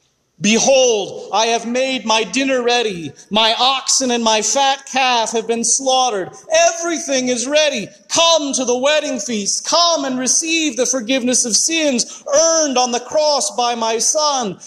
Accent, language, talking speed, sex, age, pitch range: American, English, 155 wpm, male, 40-59, 195-305 Hz